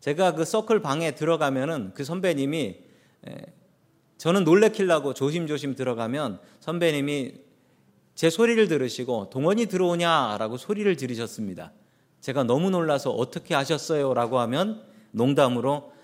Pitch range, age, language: 130-190 Hz, 40-59, Korean